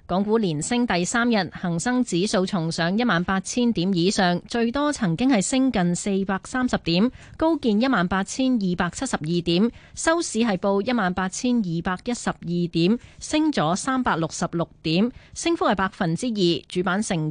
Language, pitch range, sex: Chinese, 175-235 Hz, female